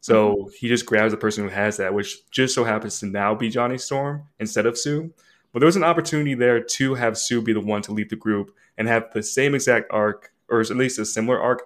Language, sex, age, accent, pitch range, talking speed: English, male, 20-39, American, 105-120 Hz, 250 wpm